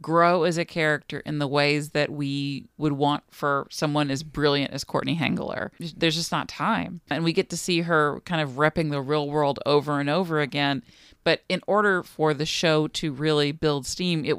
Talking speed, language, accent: 205 wpm, English, American